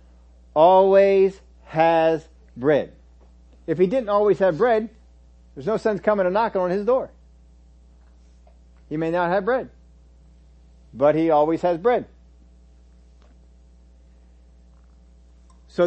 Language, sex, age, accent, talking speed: English, male, 50-69, American, 110 wpm